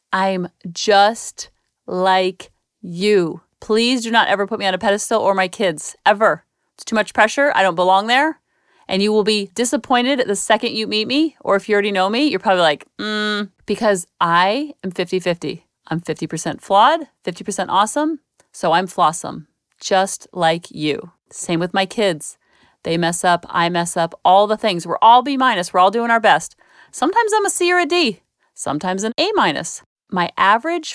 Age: 30-49